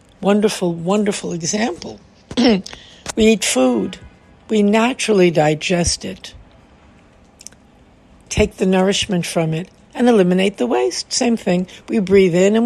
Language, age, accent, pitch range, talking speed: English, 60-79, American, 170-215 Hz, 120 wpm